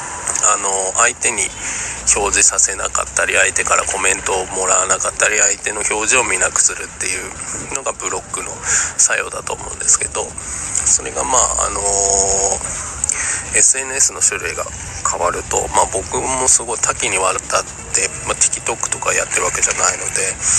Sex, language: male, Japanese